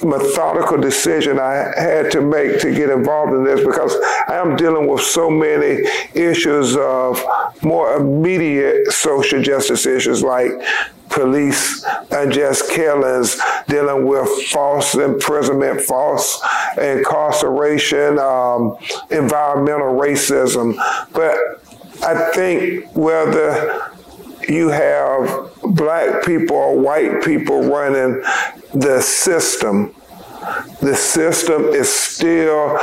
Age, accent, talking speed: 50-69, American, 100 wpm